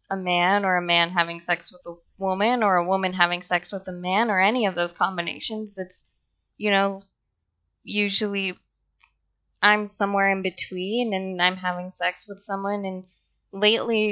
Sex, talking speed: female, 165 wpm